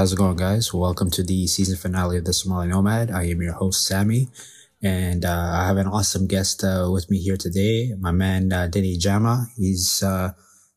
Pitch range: 95-105 Hz